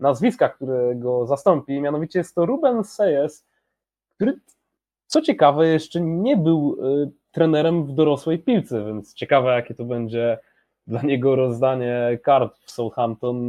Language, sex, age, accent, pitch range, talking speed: Polish, male, 20-39, native, 115-160 Hz, 135 wpm